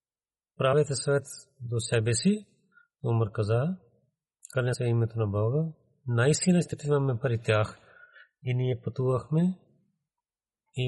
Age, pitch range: 40-59, 120-150 Hz